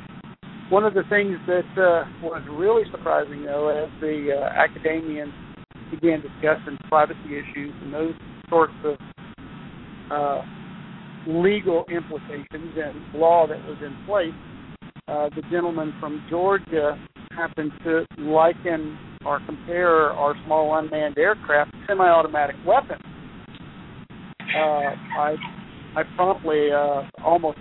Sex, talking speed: male, 115 wpm